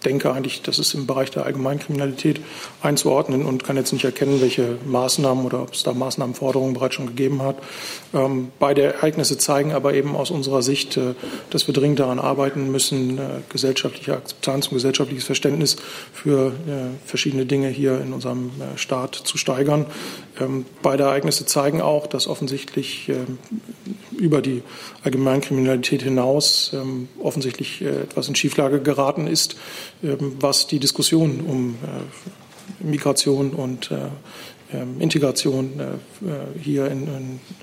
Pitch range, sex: 130-145 Hz, male